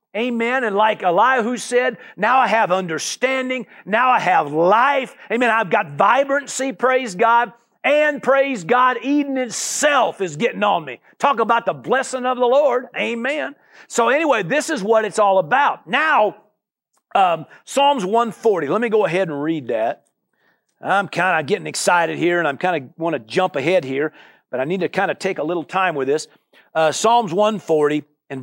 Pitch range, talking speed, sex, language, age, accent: 175-245 Hz, 185 wpm, male, English, 50-69, American